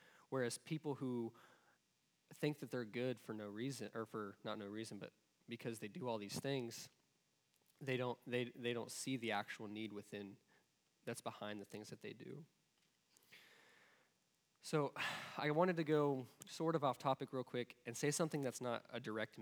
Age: 20-39